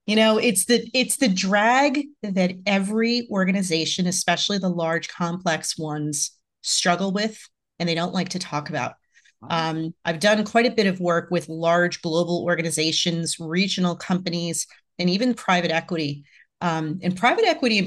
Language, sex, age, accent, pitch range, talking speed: English, female, 30-49, American, 170-205 Hz, 160 wpm